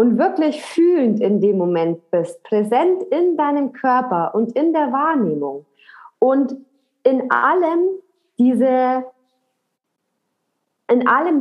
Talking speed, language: 110 wpm, German